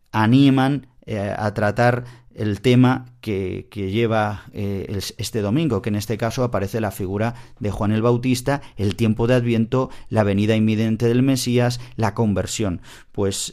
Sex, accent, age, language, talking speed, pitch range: male, Spanish, 40-59, Spanish, 155 wpm, 105-125 Hz